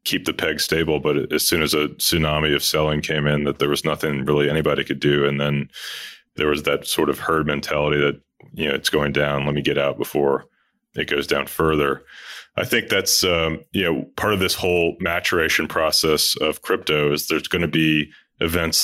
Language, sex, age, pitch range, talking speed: English, male, 30-49, 75-85 Hz, 210 wpm